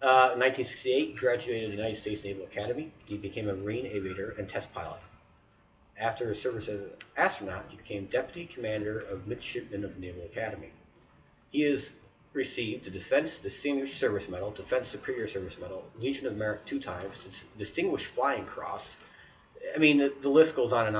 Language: English